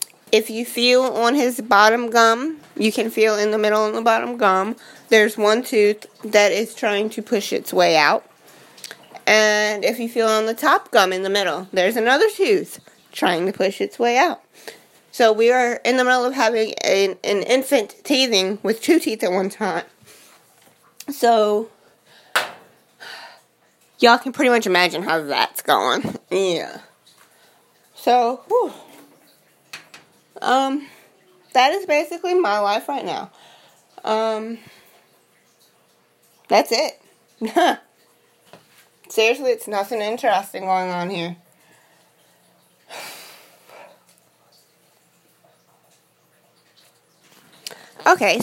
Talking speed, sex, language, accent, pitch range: 120 wpm, female, English, American, 205-255 Hz